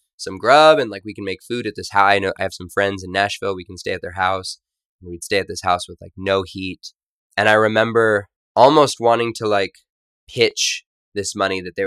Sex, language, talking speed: male, English, 235 wpm